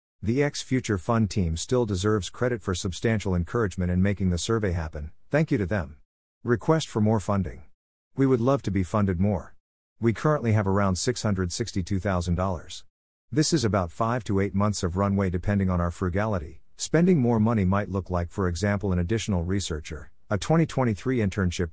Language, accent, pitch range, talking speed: English, American, 90-115 Hz, 165 wpm